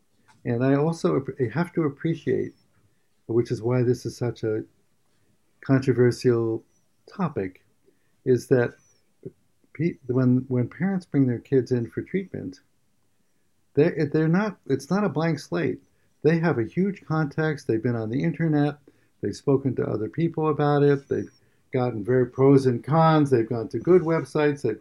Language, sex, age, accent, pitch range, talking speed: English, male, 60-79, American, 115-145 Hz, 150 wpm